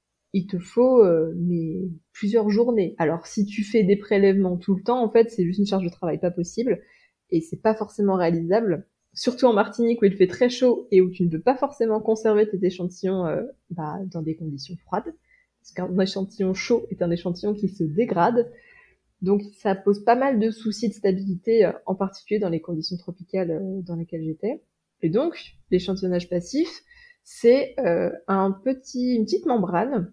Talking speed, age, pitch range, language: 190 wpm, 20-39, 180-230 Hz, French